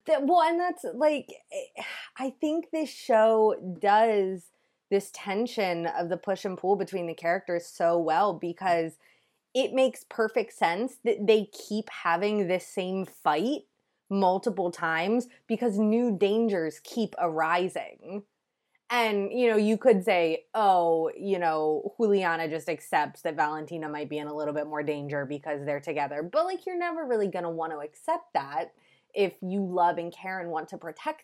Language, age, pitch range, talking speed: English, 20-39, 160-205 Hz, 165 wpm